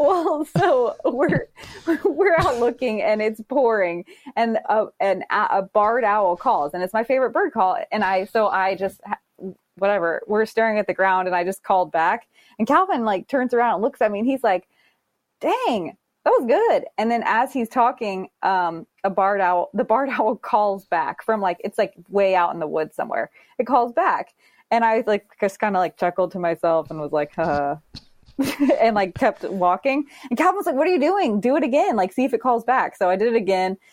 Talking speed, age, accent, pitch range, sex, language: 215 wpm, 20-39, American, 185-250 Hz, female, English